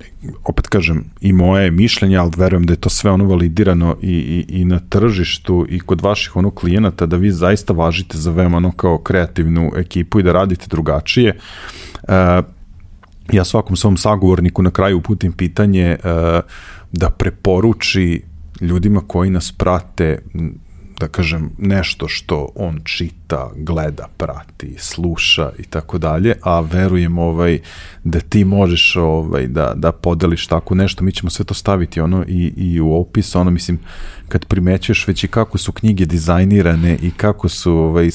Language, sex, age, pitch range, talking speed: English, male, 40-59, 85-95 Hz, 155 wpm